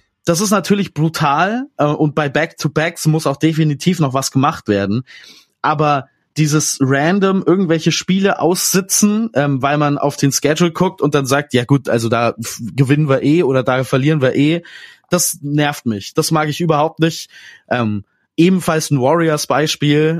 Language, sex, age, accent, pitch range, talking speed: German, male, 20-39, German, 135-170 Hz, 170 wpm